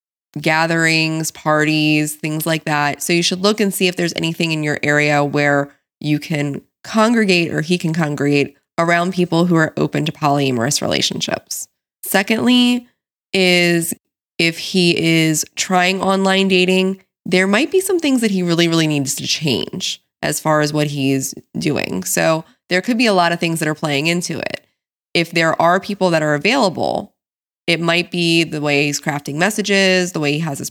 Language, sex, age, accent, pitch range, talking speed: English, female, 20-39, American, 155-185 Hz, 180 wpm